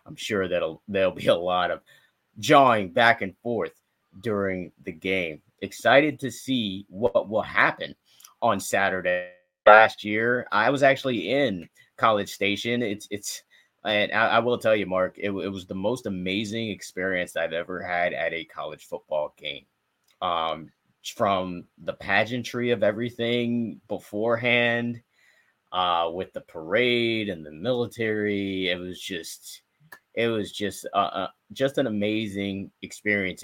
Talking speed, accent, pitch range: 145 wpm, American, 95-120 Hz